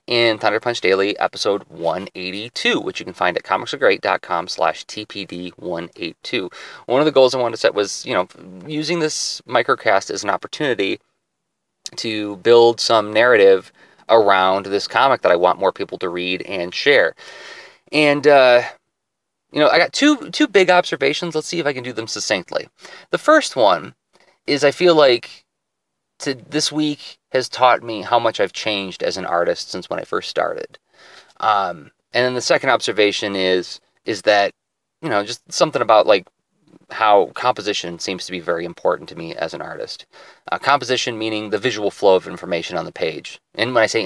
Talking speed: 180 wpm